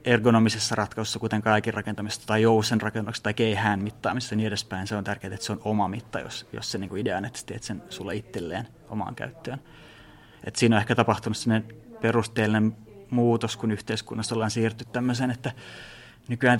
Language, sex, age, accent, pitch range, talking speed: Finnish, male, 30-49, native, 110-120 Hz, 175 wpm